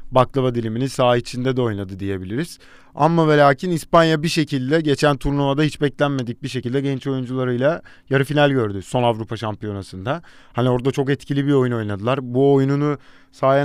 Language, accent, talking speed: Turkish, native, 160 wpm